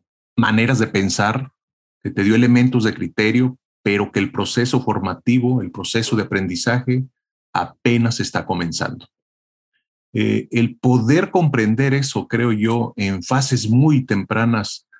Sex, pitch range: male, 100-125 Hz